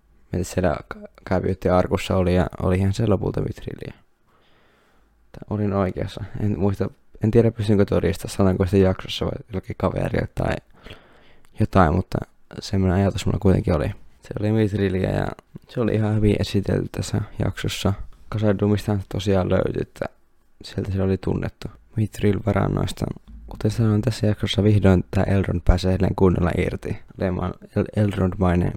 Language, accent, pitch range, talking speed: Finnish, native, 90-105 Hz, 130 wpm